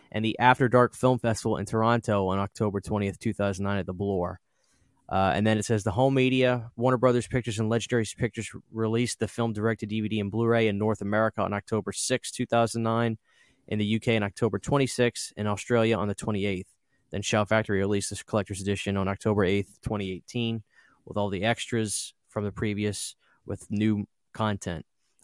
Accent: American